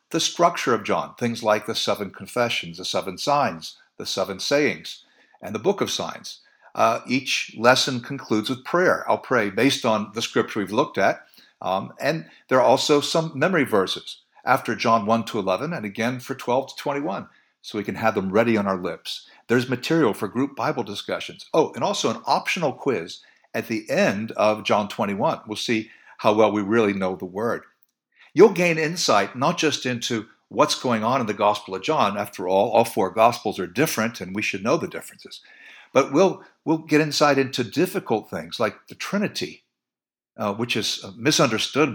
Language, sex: English, male